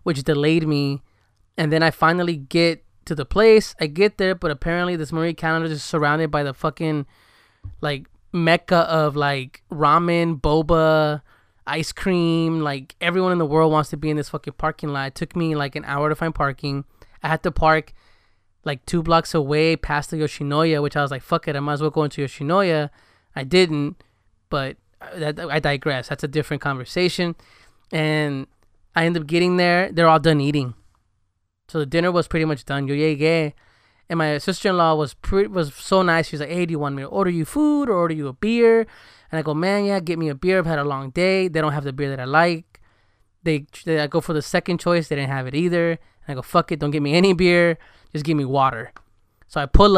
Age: 20-39